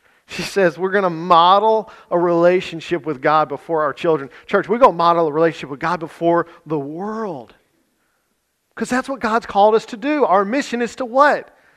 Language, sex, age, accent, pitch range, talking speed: English, male, 40-59, American, 140-185 Hz, 195 wpm